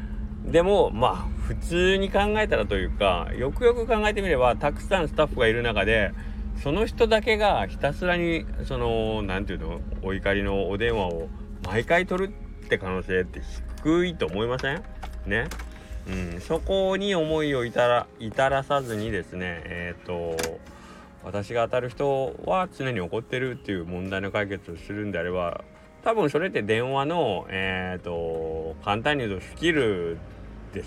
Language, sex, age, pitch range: Japanese, male, 20-39, 95-145 Hz